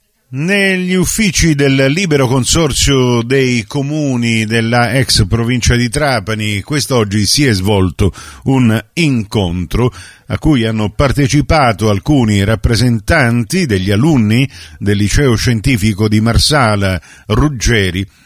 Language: Italian